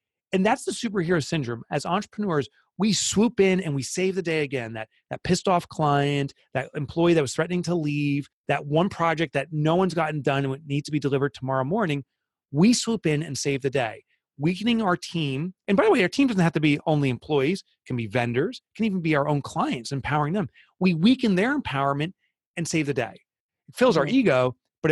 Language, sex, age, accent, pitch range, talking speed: English, male, 30-49, American, 135-180 Hz, 220 wpm